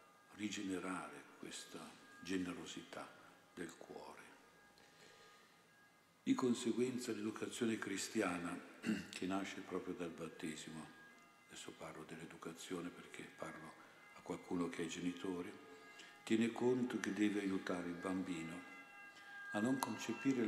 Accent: native